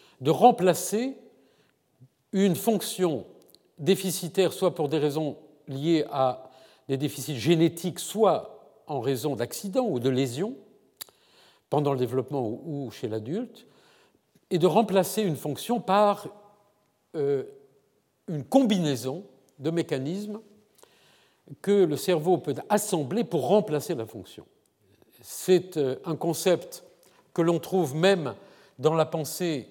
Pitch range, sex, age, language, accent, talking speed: 145-195 Hz, male, 50-69, French, French, 115 wpm